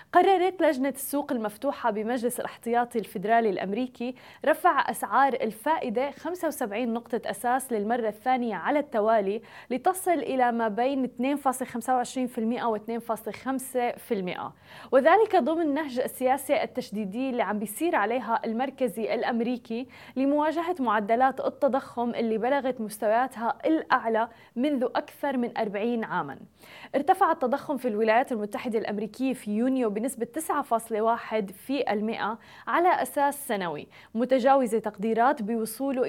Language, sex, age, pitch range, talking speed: Arabic, female, 20-39, 225-270 Hz, 110 wpm